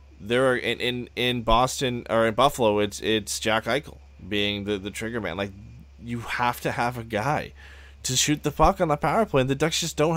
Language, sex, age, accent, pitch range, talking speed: English, male, 20-39, American, 100-120 Hz, 225 wpm